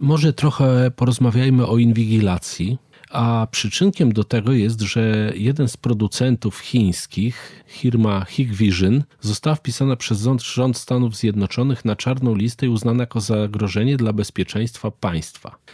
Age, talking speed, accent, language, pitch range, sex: 40-59, 125 wpm, native, Polish, 105-140 Hz, male